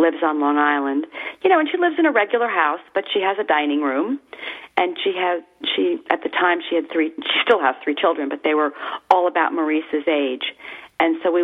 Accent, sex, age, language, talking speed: American, female, 40-59, English, 230 wpm